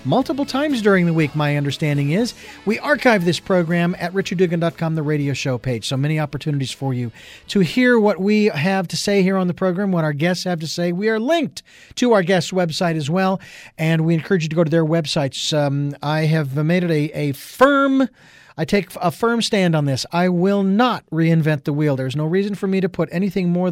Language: English